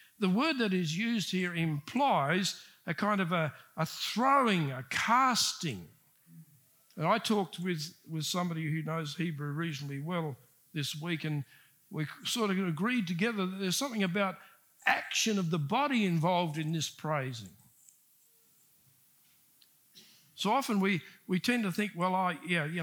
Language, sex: English, male